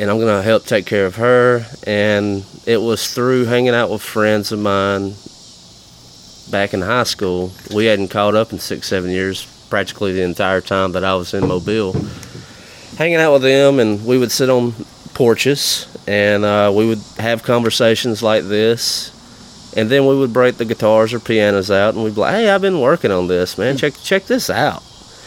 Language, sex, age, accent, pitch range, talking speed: English, male, 30-49, American, 95-115 Hz, 195 wpm